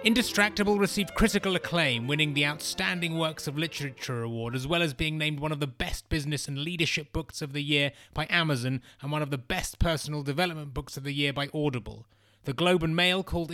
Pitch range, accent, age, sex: 135-170 Hz, British, 30-49, male